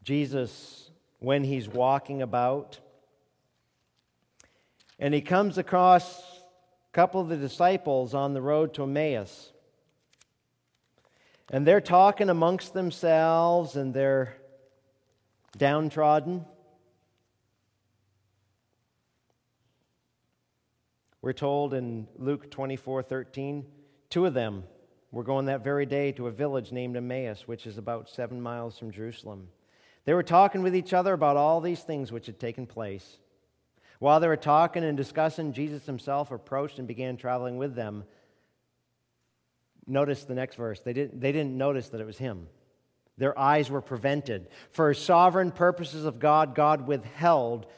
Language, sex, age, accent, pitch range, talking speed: English, male, 50-69, American, 120-150 Hz, 130 wpm